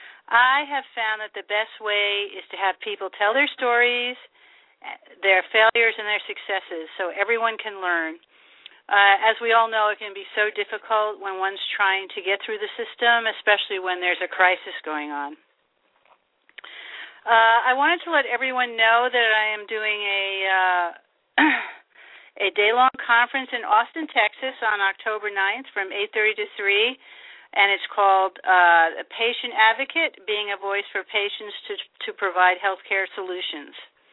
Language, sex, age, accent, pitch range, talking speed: English, female, 50-69, American, 195-240 Hz, 160 wpm